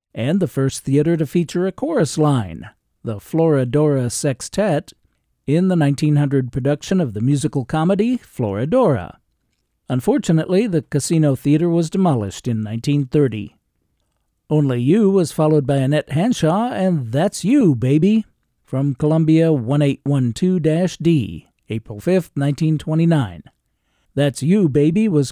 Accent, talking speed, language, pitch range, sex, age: American, 120 wpm, English, 135-170 Hz, male, 50-69